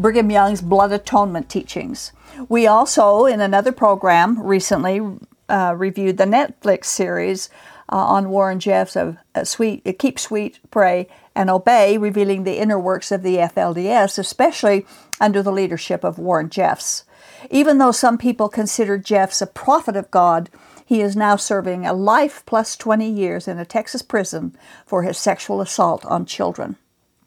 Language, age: English, 50-69